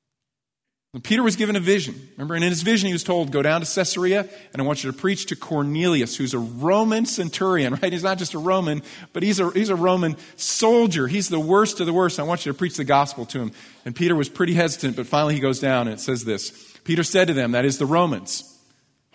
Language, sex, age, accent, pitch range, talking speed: English, male, 40-59, American, 135-180 Hz, 255 wpm